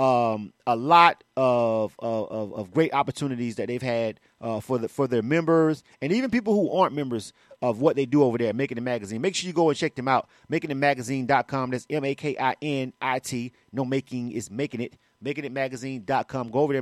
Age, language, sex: 30-49, English, male